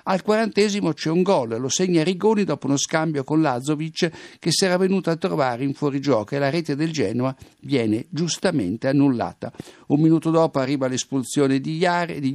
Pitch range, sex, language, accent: 135-170 Hz, male, Italian, native